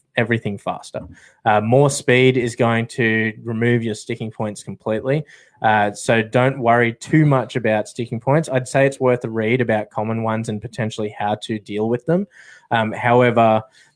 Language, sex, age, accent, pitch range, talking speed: English, male, 20-39, Australian, 110-125 Hz, 170 wpm